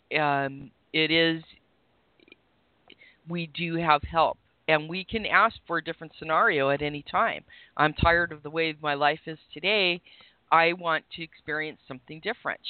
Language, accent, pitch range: English, American, 140-165 Hz